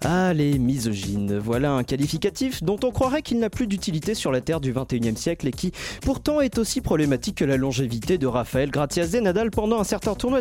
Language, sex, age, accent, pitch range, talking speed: French, male, 30-49, French, 130-215 Hz, 220 wpm